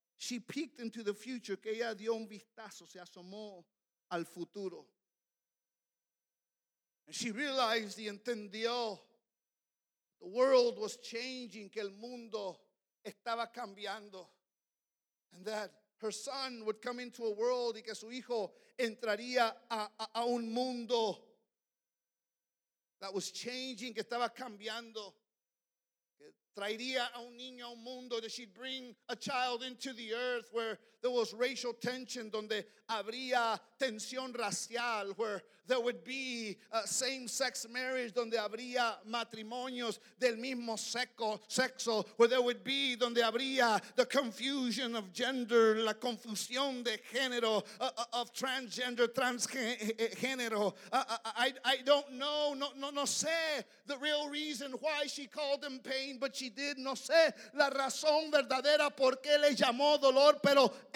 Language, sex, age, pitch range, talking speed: English, male, 50-69, 220-260 Hz, 135 wpm